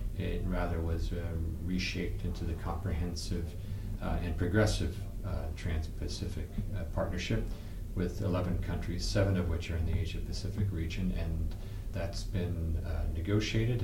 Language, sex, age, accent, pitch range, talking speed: English, male, 40-59, American, 85-100 Hz, 130 wpm